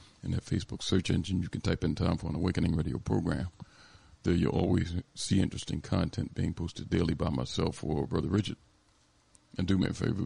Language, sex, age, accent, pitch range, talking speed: English, male, 50-69, American, 85-95 Hz, 200 wpm